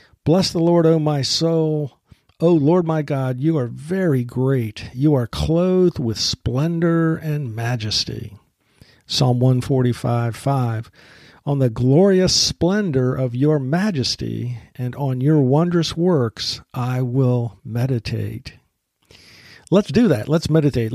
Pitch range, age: 120-155 Hz, 50-69